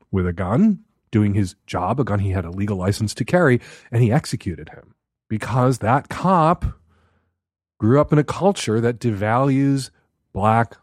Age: 40-59